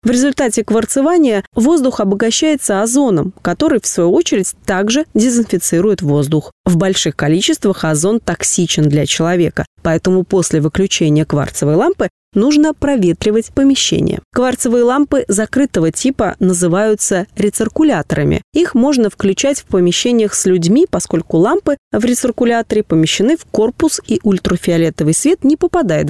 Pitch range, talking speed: 175-245 Hz, 120 wpm